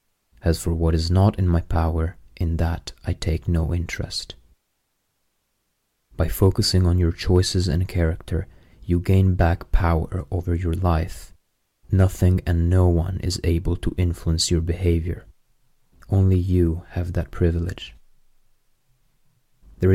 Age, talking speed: 30-49, 130 wpm